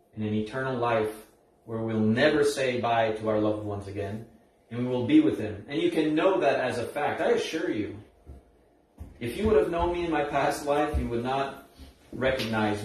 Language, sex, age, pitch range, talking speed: English, male, 30-49, 110-130 Hz, 210 wpm